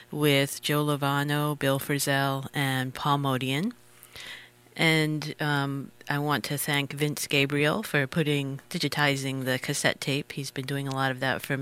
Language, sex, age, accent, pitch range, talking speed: English, female, 40-59, American, 135-155 Hz, 155 wpm